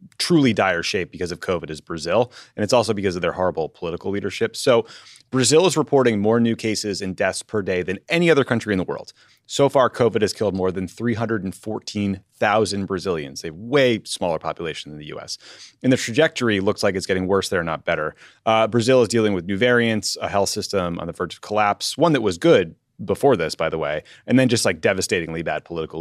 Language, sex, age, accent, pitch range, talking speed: English, male, 30-49, American, 95-120 Hz, 215 wpm